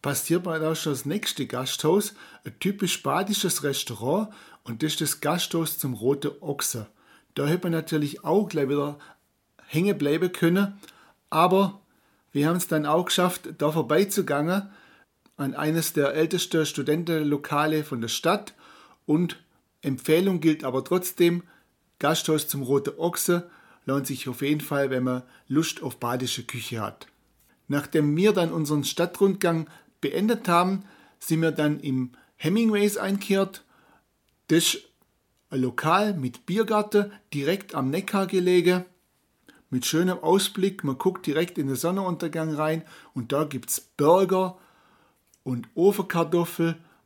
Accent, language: German, German